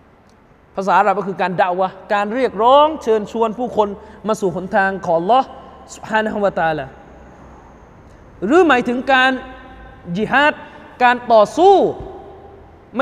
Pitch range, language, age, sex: 220-310 Hz, Thai, 20-39, male